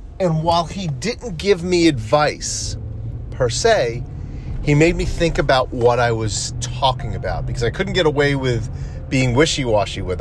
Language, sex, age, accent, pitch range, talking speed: English, male, 40-59, American, 115-160 Hz, 165 wpm